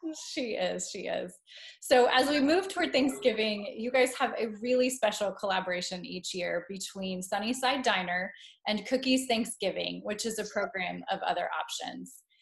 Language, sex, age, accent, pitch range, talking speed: English, female, 20-39, American, 190-255 Hz, 155 wpm